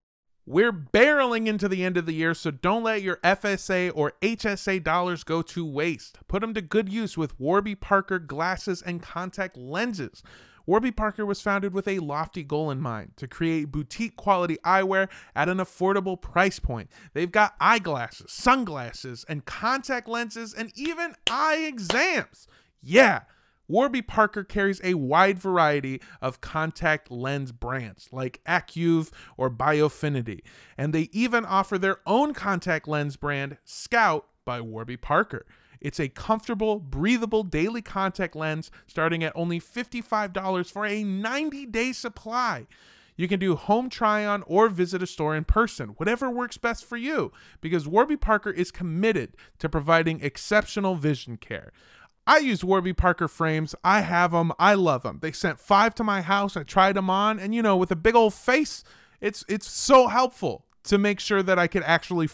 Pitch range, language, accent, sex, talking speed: 160-215 Hz, English, American, male, 165 wpm